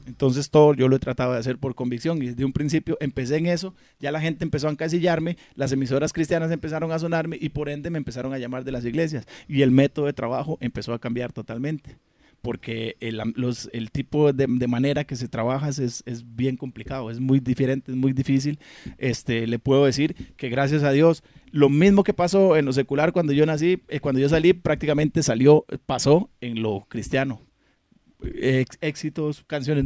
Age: 30-49